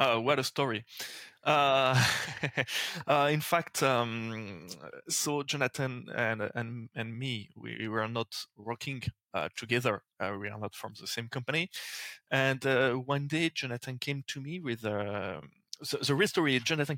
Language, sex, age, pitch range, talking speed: English, male, 20-39, 110-145 Hz, 155 wpm